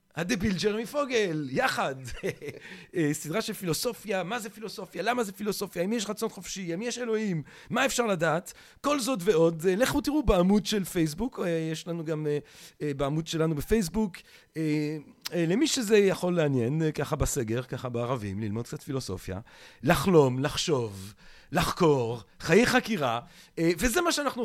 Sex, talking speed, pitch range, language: male, 135 wpm, 150-220 Hz, Hebrew